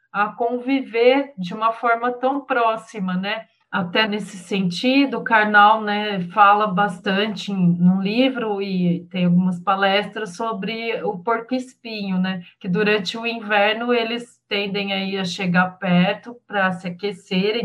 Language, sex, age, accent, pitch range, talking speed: Portuguese, female, 30-49, Brazilian, 195-235 Hz, 135 wpm